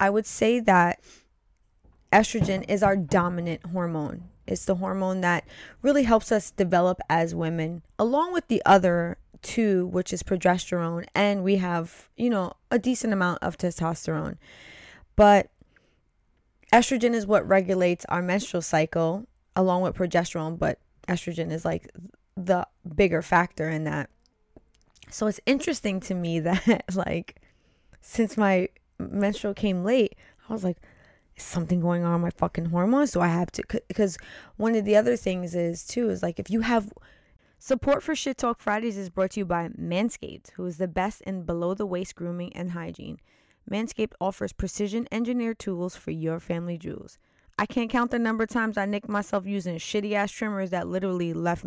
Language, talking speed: English, 170 wpm